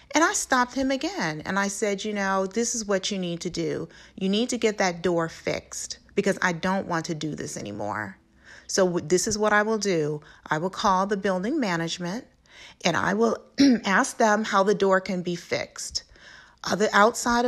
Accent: American